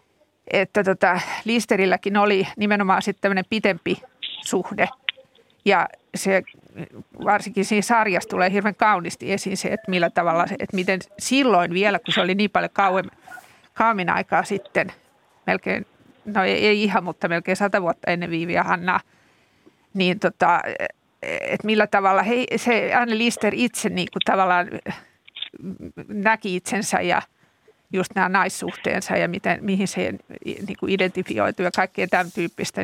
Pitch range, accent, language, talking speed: 185-210 Hz, native, Finnish, 135 wpm